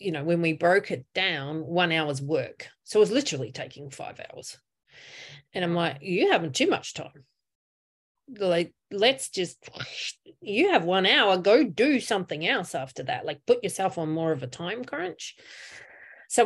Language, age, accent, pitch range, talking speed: English, 30-49, Australian, 160-200 Hz, 175 wpm